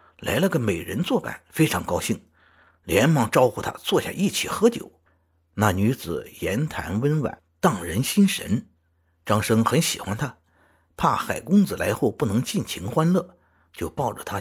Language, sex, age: Chinese, male, 50-69